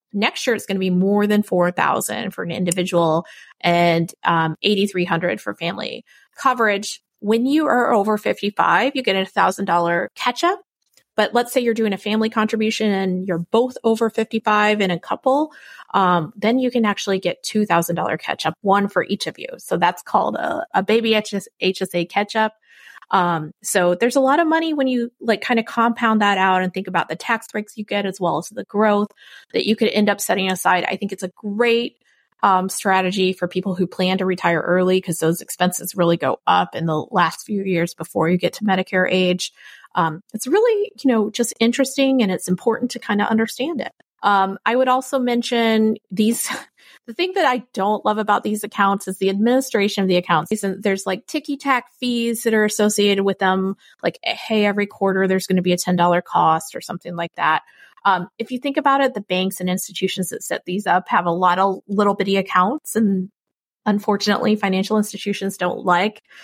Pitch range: 185-225 Hz